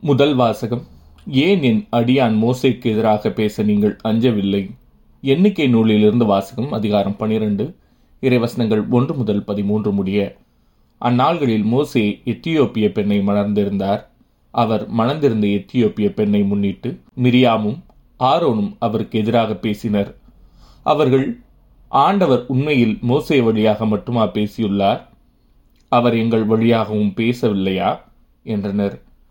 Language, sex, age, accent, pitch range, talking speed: Tamil, male, 30-49, native, 105-130 Hz, 95 wpm